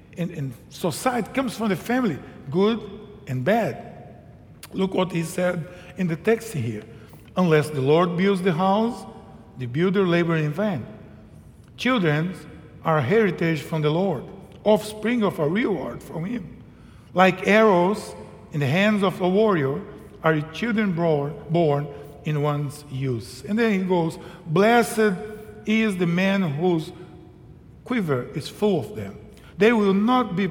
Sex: male